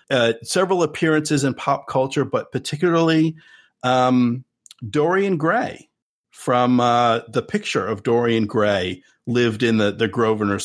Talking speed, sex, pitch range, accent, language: 130 wpm, male, 110-140 Hz, American, English